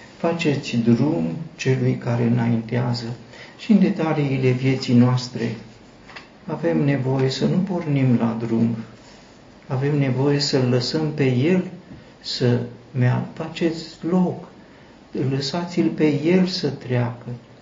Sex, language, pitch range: male, Romanian, 120-145 Hz